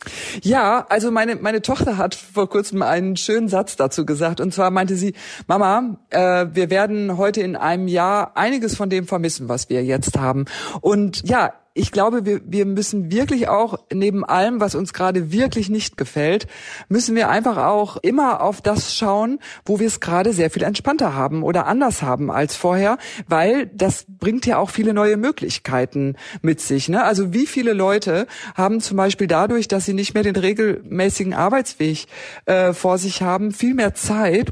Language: German